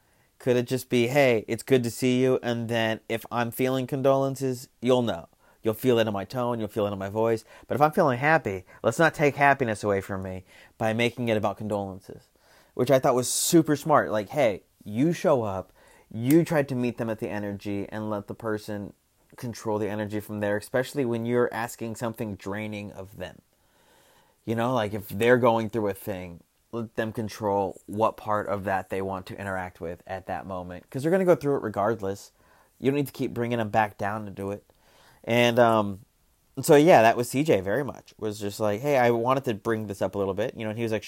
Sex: male